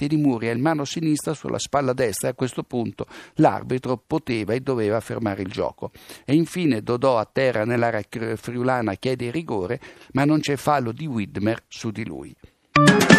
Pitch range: 120-155 Hz